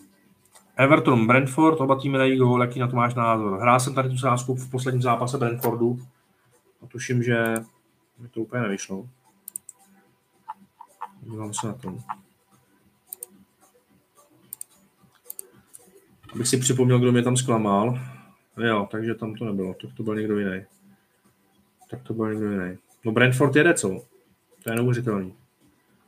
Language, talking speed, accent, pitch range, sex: Czech, 145 wpm, native, 110-130 Hz, male